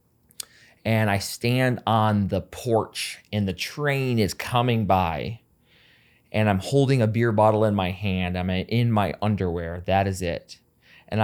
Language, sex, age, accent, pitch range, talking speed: English, male, 20-39, American, 95-120 Hz, 155 wpm